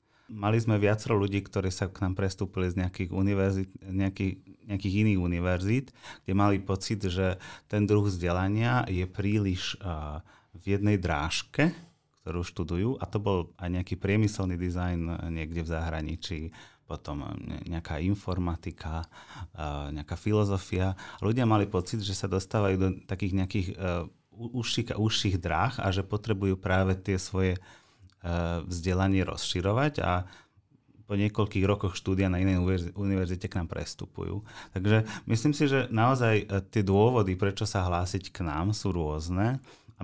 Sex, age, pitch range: male, 30-49, 90-105 Hz